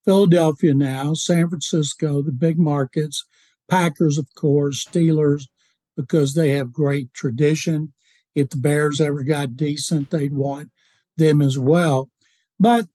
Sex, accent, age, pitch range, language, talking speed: male, American, 60-79, 155-200 Hz, English, 130 wpm